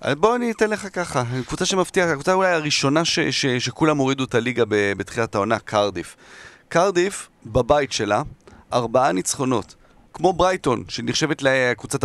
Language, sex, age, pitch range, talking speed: Hebrew, male, 30-49, 115-145 Hz, 155 wpm